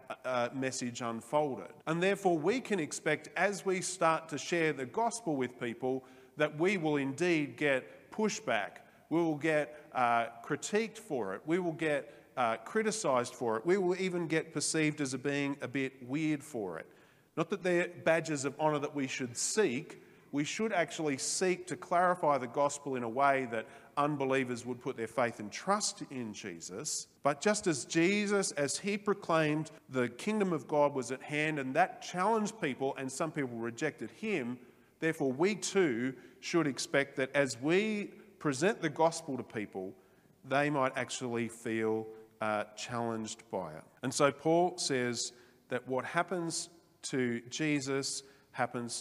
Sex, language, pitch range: male, English, 125-170 Hz